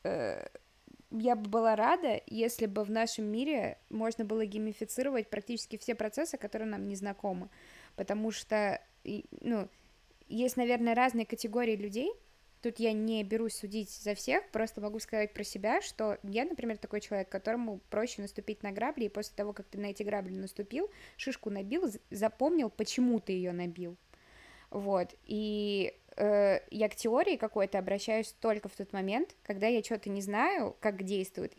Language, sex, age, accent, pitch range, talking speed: Russian, female, 20-39, native, 200-235 Hz, 160 wpm